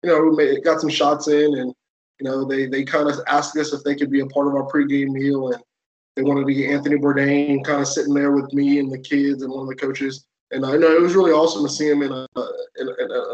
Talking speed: 290 wpm